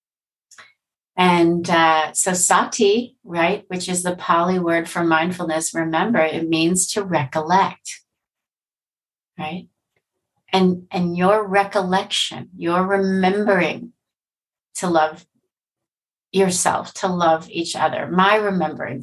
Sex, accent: female, American